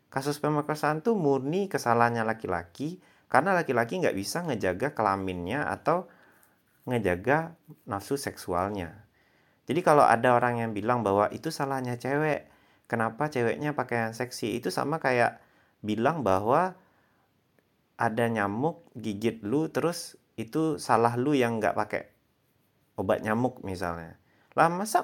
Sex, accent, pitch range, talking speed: male, native, 95-130 Hz, 120 wpm